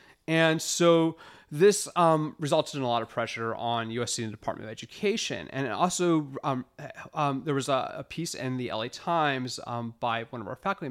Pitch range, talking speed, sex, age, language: 125-160 Hz, 200 wpm, male, 30-49, English